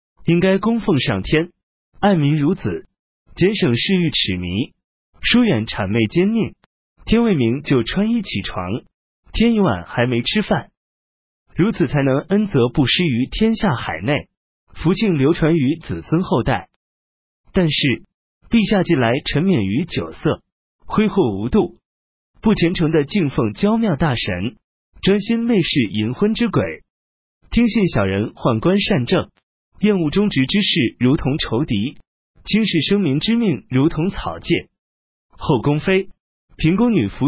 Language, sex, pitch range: Chinese, male, 120-200 Hz